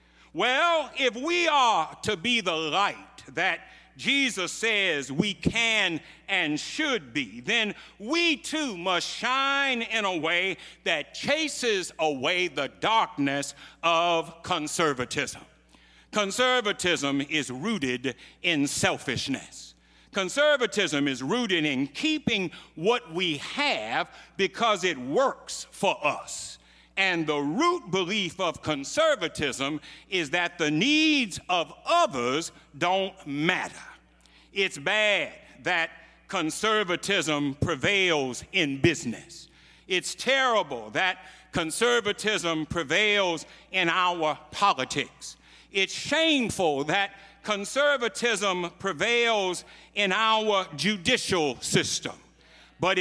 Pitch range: 160-235 Hz